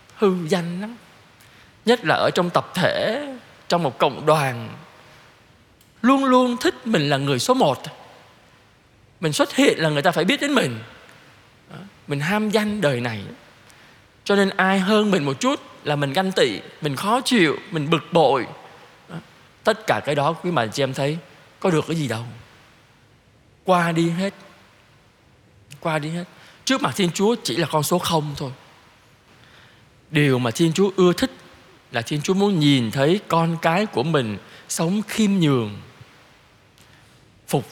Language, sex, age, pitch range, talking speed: Vietnamese, male, 20-39, 130-205 Hz, 165 wpm